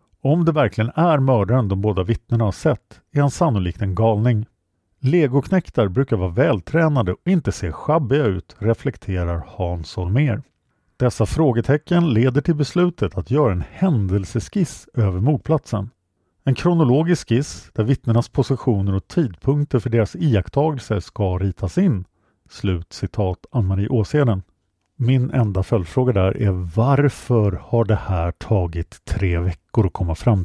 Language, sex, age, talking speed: Swedish, male, 50-69, 140 wpm